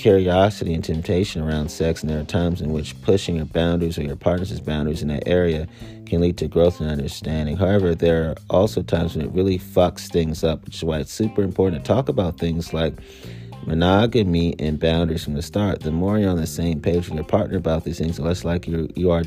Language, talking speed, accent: English, 225 wpm, American